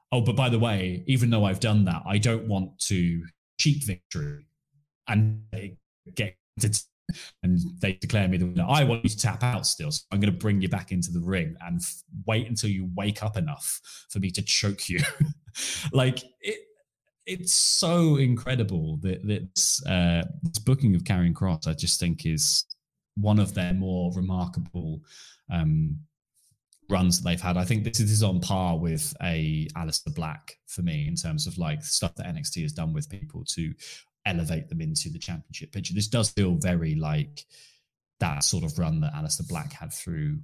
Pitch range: 90-145 Hz